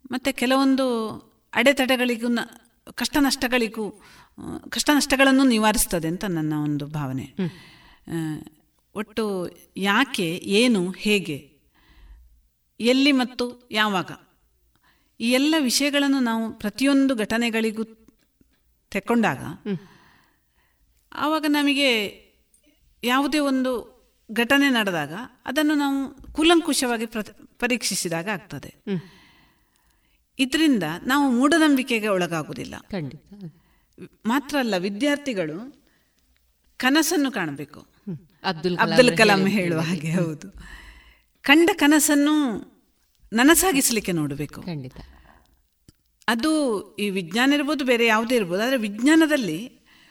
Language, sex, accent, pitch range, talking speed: Kannada, female, native, 185-270 Hz, 80 wpm